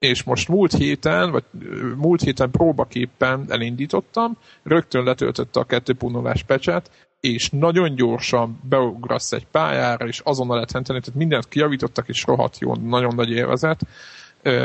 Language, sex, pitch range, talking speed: Hungarian, male, 120-150 Hz, 130 wpm